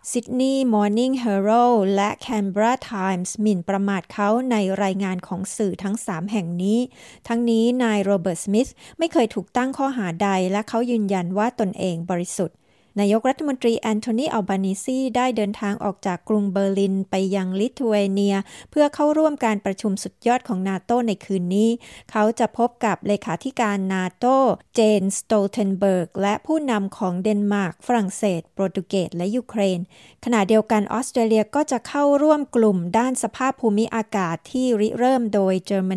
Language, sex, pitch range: Thai, female, 195-245 Hz